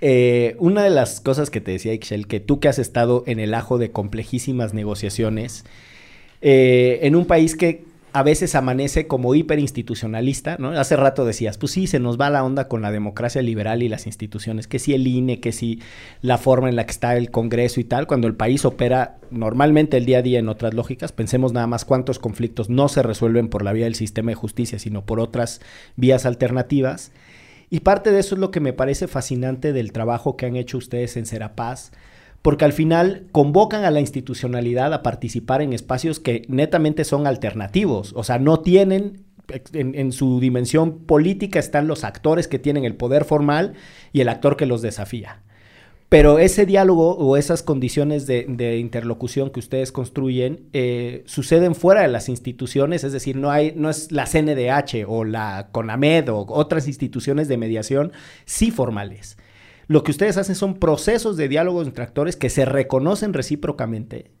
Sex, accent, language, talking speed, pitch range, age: male, Mexican, Spanish, 190 wpm, 115-150 Hz, 40-59